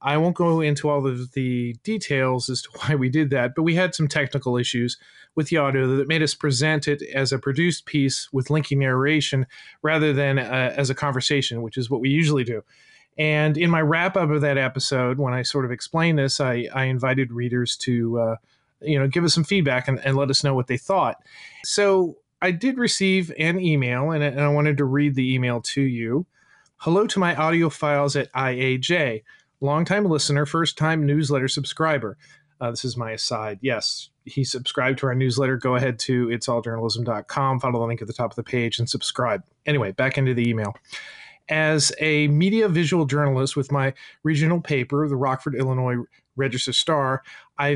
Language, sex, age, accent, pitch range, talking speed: English, male, 30-49, American, 130-155 Hz, 195 wpm